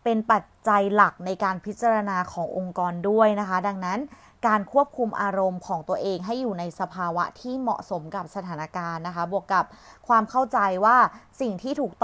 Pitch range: 175-220 Hz